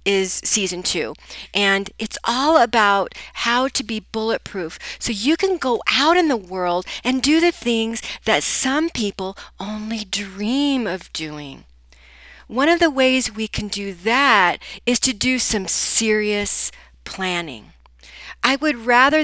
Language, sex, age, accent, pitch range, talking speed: English, female, 40-59, American, 170-240 Hz, 145 wpm